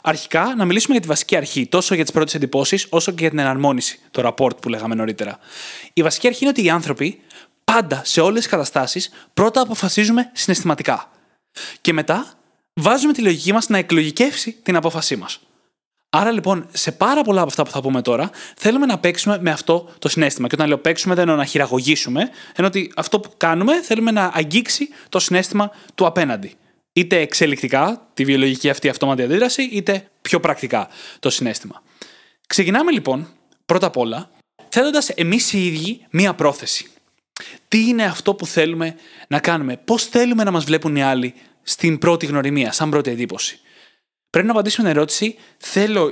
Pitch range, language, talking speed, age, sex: 150-210 Hz, Greek, 175 wpm, 20-39, male